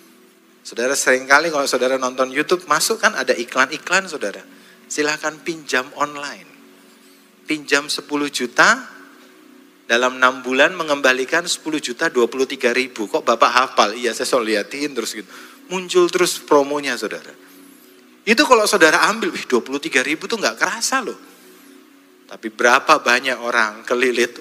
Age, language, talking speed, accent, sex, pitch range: 40-59, Indonesian, 130 wpm, native, male, 125-195 Hz